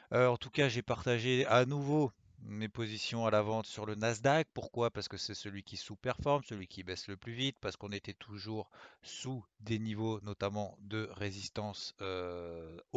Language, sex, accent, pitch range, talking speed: French, male, French, 105-130 Hz, 185 wpm